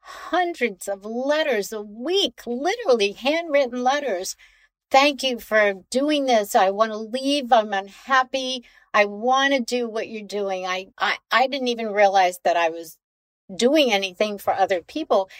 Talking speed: 150 wpm